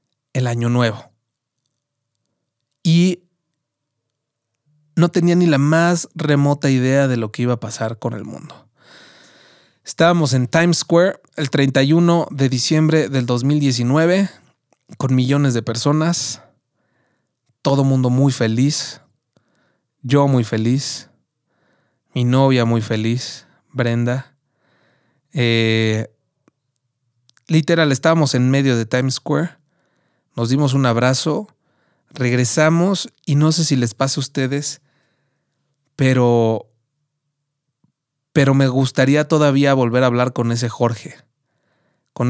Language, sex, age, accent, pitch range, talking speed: Spanish, male, 30-49, Mexican, 120-145 Hz, 110 wpm